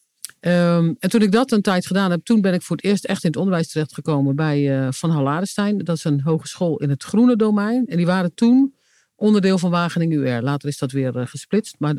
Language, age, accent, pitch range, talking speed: Dutch, 50-69, Dutch, 150-195 Hz, 230 wpm